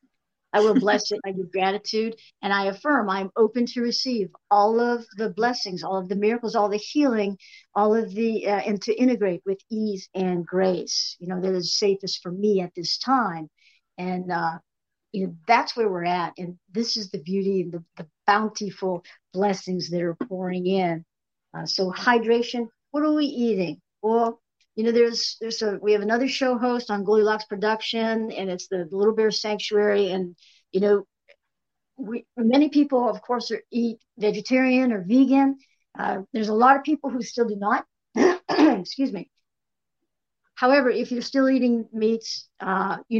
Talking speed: 180 wpm